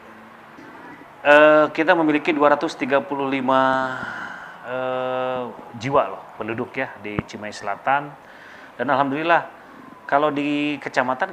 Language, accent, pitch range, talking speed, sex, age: Indonesian, native, 105-135 Hz, 85 wpm, male, 30-49